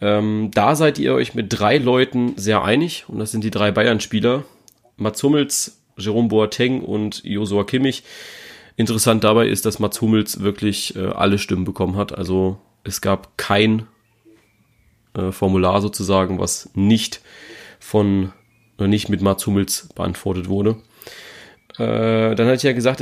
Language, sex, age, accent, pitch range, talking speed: German, male, 30-49, German, 100-120 Hz, 150 wpm